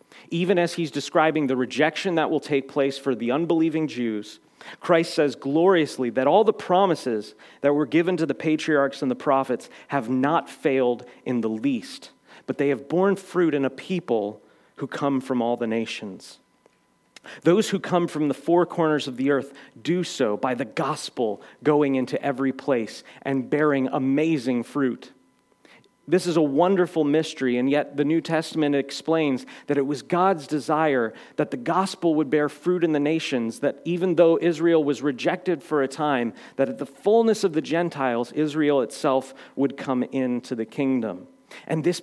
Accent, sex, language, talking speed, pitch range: American, male, English, 175 wpm, 135-165 Hz